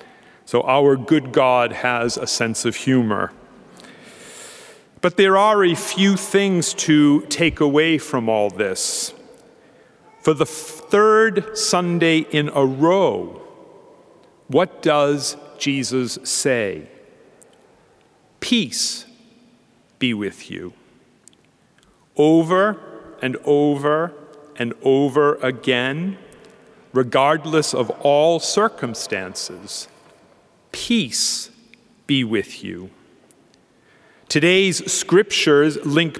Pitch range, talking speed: 135-195 Hz, 90 wpm